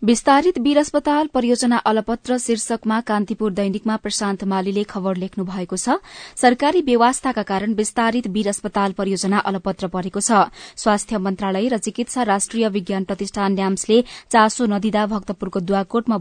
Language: English